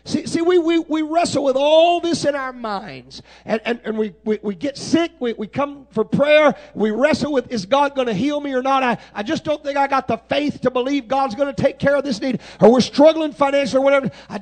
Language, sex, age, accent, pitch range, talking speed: English, male, 40-59, American, 185-290 Hz, 260 wpm